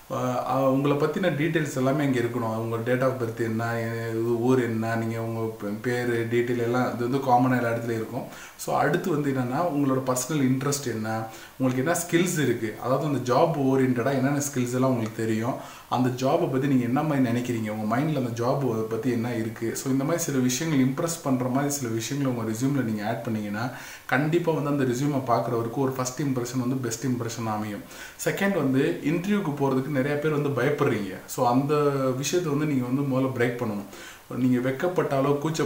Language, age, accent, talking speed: Tamil, 20-39, native, 155 wpm